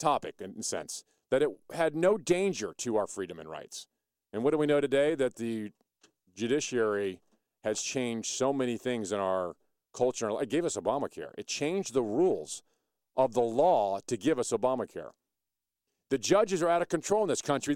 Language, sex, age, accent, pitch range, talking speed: English, male, 50-69, American, 130-210 Hz, 185 wpm